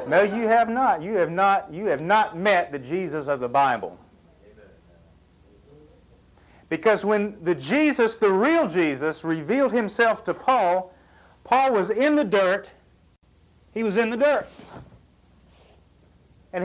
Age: 50-69